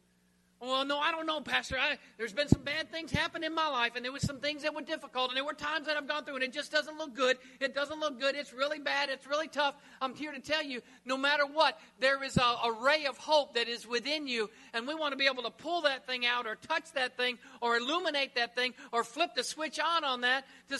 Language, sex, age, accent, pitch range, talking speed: English, male, 50-69, American, 175-275 Hz, 270 wpm